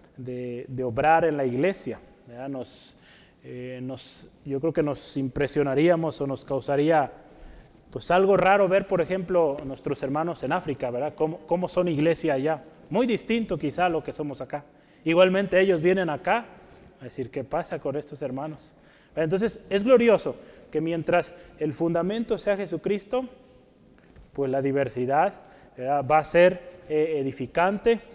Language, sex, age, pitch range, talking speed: Spanish, male, 30-49, 150-200 Hz, 155 wpm